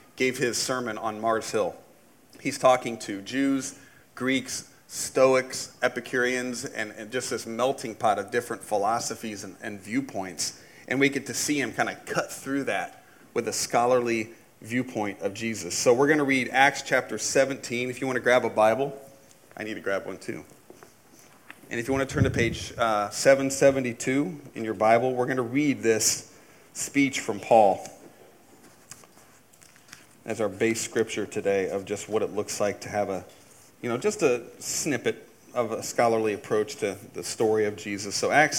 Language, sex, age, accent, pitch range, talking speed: English, male, 30-49, American, 110-135 Hz, 175 wpm